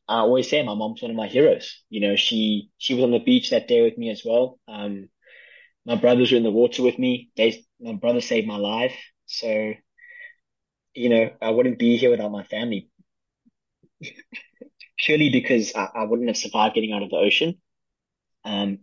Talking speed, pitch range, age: 195 wpm, 95-120 Hz, 10-29